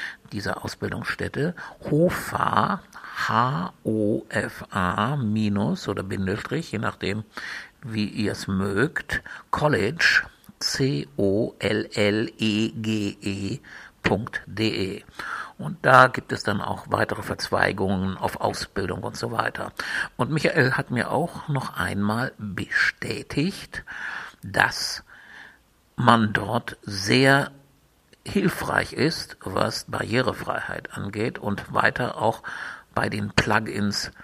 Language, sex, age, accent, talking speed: German, male, 60-79, German, 90 wpm